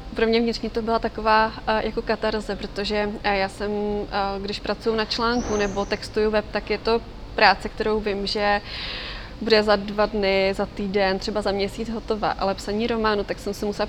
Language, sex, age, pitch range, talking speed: Czech, female, 20-39, 200-220 Hz, 180 wpm